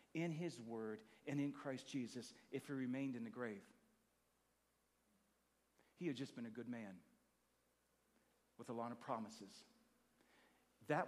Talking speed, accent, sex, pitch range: 140 wpm, American, male, 130-180 Hz